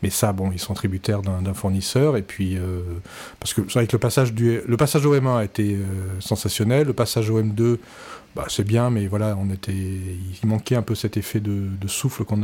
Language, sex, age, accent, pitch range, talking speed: French, male, 40-59, French, 105-125 Hz, 225 wpm